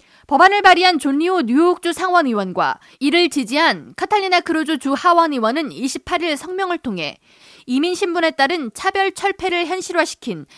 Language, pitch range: Korean, 250-345 Hz